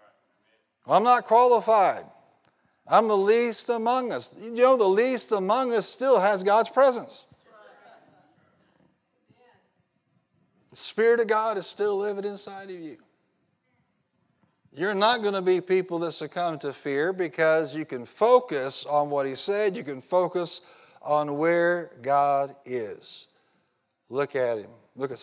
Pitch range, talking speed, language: 125-195 Hz, 140 wpm, English